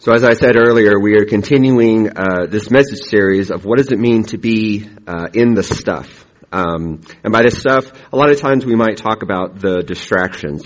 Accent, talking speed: American, 215 wpm